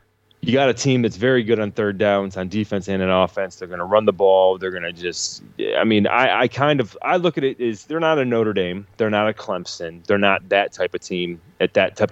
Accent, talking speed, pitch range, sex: American, 265 wpm, 95-110 Hz, male